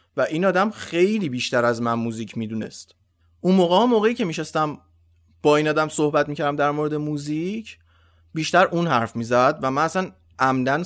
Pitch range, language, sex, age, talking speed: 125-175 Hz, Persian, male, 30-49, 165 wpm